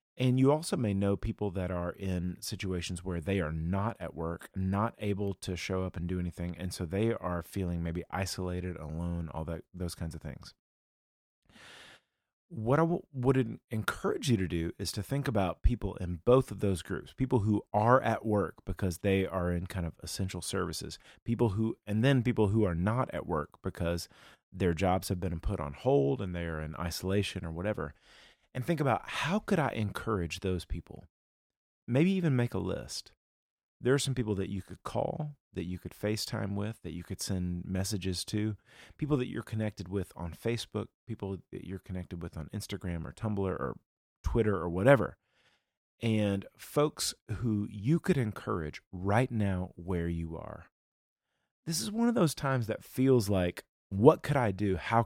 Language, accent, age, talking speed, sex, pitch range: English, American, 30-49, 185 wpm, male, 90-115 Hz